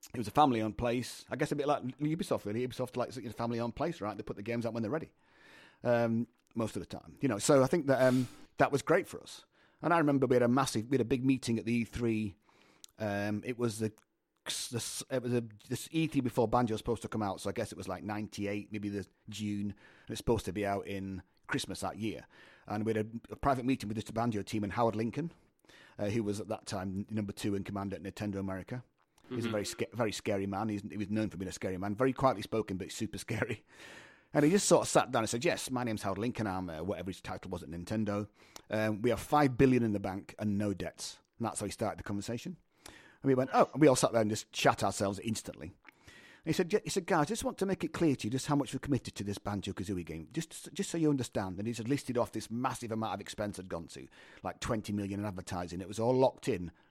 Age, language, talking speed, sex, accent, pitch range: 30-49, English, 260 wpm, male, British, 100-125 Hz